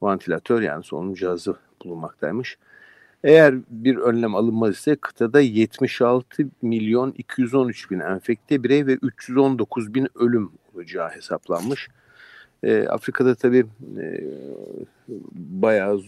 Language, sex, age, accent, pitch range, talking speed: Turkish, male, 50-69, native, 100-130 Hz, 100 wpm